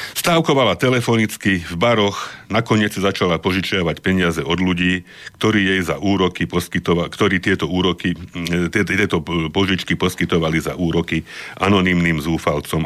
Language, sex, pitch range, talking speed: Slovak, male, 80-100 Hz, 100 wpm